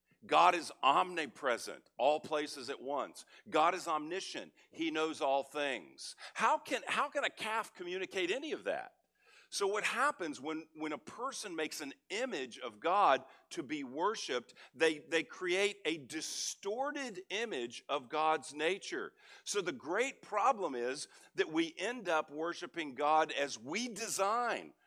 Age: 50-69